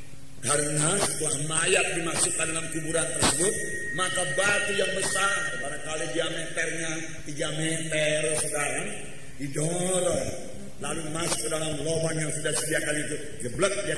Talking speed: 120 wpm